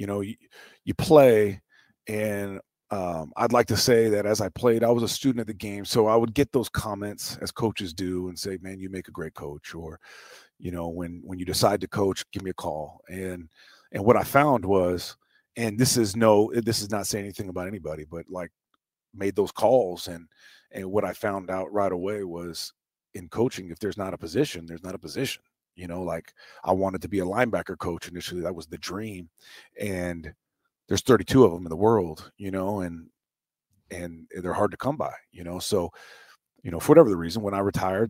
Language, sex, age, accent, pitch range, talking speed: English, male, 40-59, American, 90-105 Hz, 215 wpm